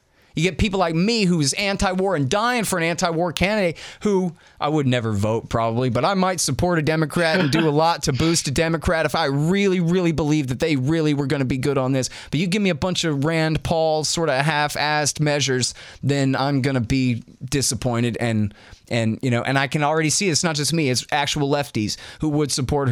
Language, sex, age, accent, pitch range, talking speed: English, male, 30-49, American, 130-180 Hz, 225 wpm